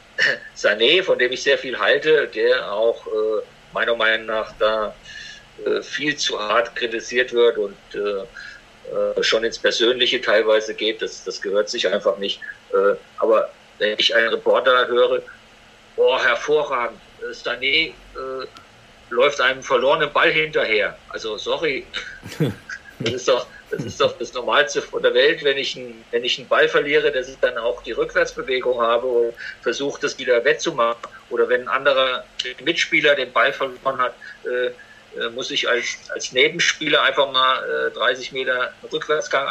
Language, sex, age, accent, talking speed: German, male, 50-69, German, 155 wpm